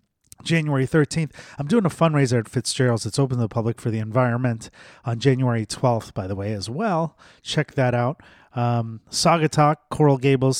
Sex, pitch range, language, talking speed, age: male, 115-145 Hz, English, 180 wpm, 30-49